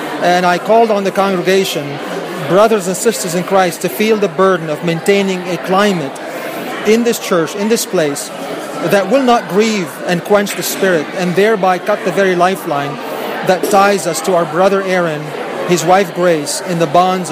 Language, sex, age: English, male, 30-49